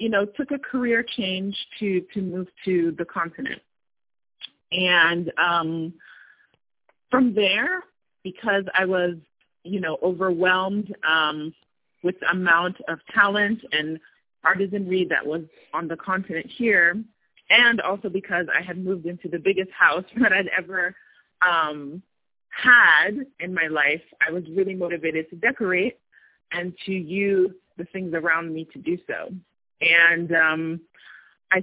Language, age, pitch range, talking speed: English, 30-49, 165-200 Hz, 140 wpm